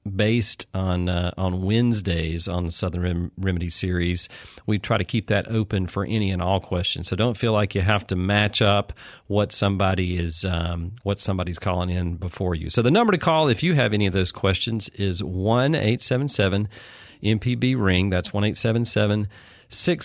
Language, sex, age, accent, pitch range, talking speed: English, male, 40-59, American, 95-110 Hz, 195 wpm